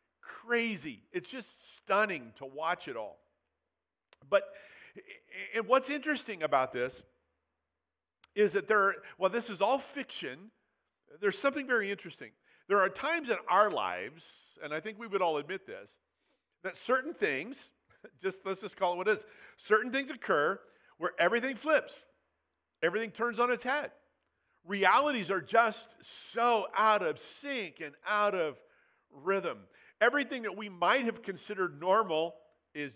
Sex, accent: male, American